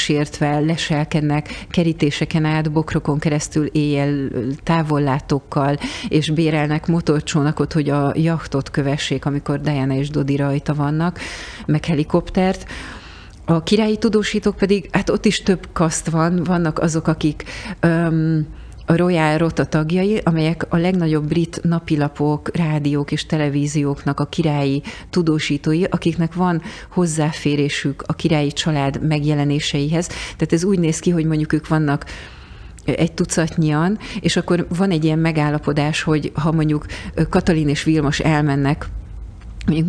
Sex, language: female, Hungarian